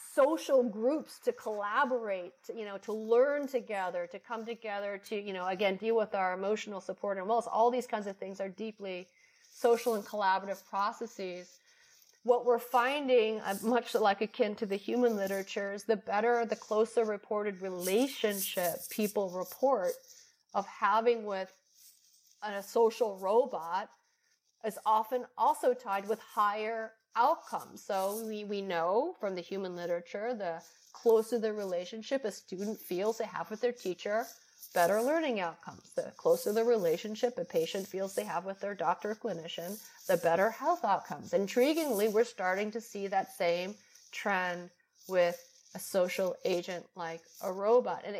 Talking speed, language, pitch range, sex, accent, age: 155 wpm, English, 195-240 Hz, female, American, 30-49